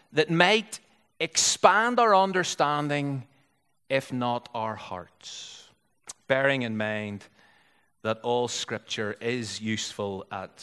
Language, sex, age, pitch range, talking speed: English, male, 30-49, 125-160 Hz, 100 wpm